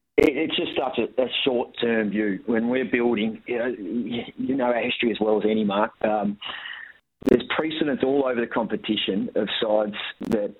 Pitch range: 105-120 Hz